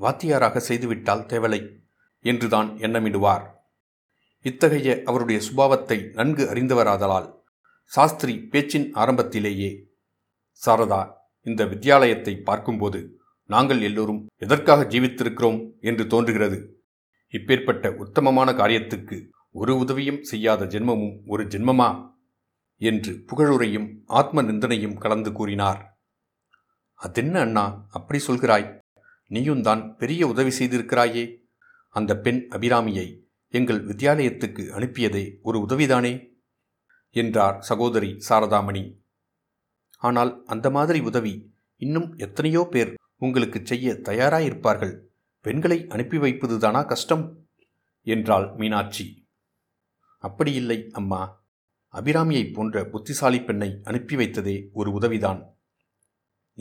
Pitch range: 105-125 Hz